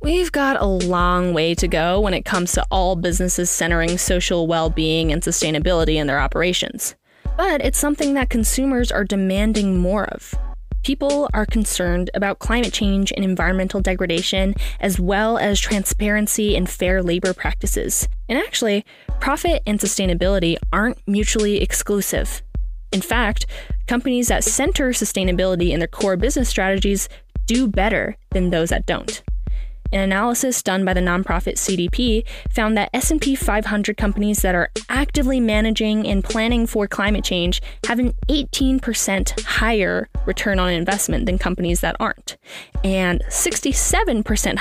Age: 10-29